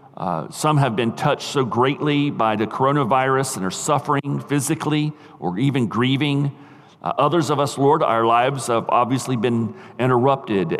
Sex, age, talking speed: male, 50-69, 155 wpm